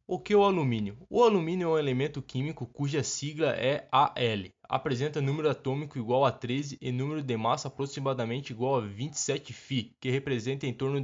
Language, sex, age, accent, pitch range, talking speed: Portuguese, male, 20-39, Brazilian, 125-155 Hz, 185 wpm